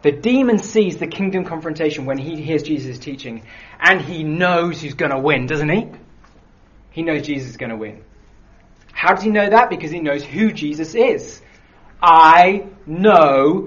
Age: 20-39